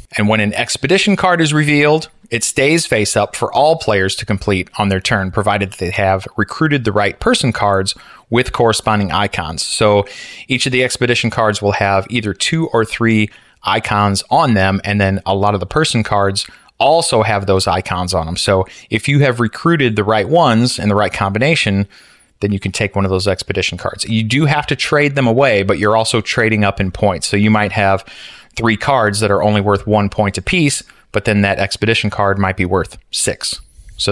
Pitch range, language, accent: 100-125 Hz, English, American